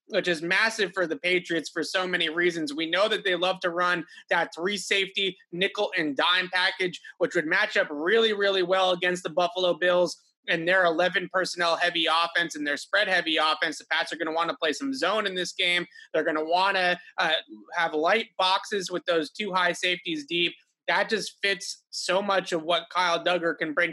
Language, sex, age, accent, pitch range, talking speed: English, male, 20-39, American, 165-190 Hz, 195 wpm